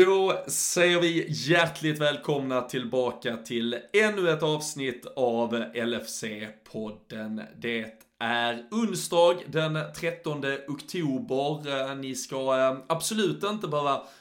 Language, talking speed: Swedish, 95 wpm